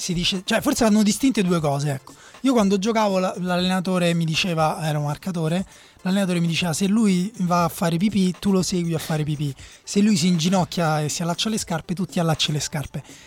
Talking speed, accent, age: 215 wpm, native, 20-39